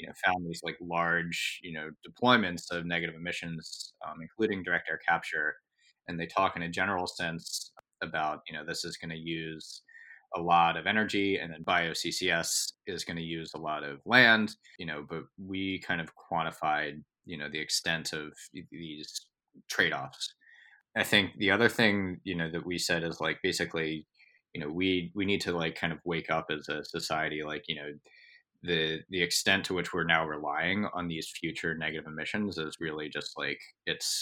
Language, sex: English, male